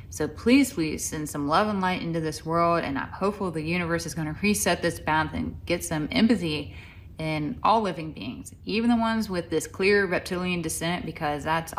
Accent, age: American, 30-49